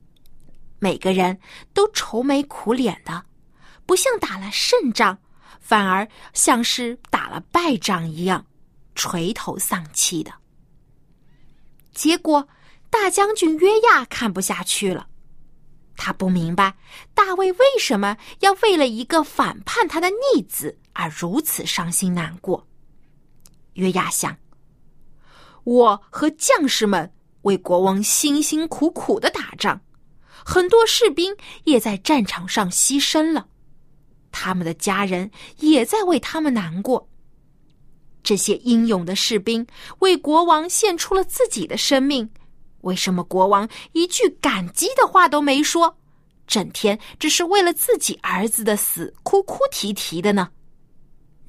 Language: Chinese